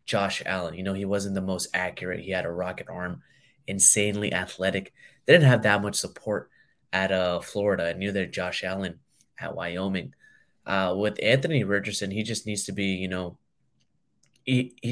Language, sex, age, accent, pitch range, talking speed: English, male, 20-39, American, 90-105 Hz, 175 wpm